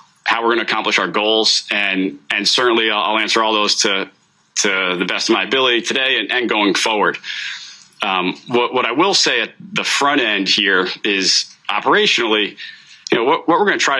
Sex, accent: male, American